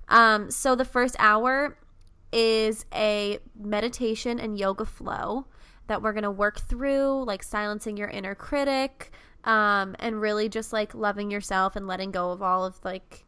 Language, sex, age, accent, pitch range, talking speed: English, female, 20-39, American, 205-240 Hz, 165 wpm